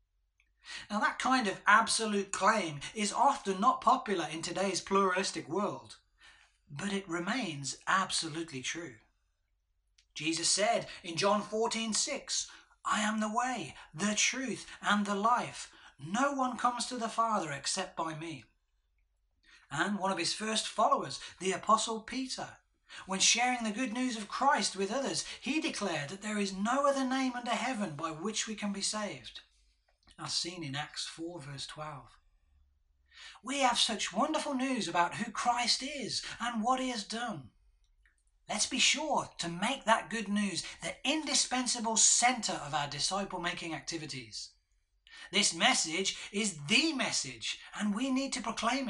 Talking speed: 150 wpm